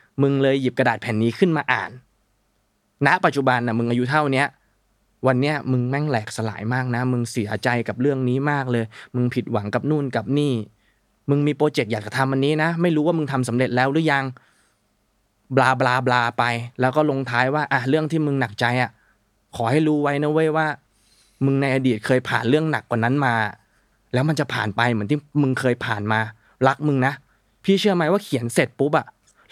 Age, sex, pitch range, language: 20-39, male, 120-150 Hz, Thai